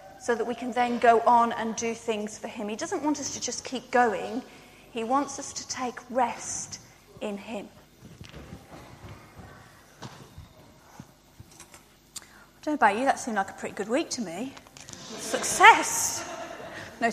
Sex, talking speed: female, 155 wpm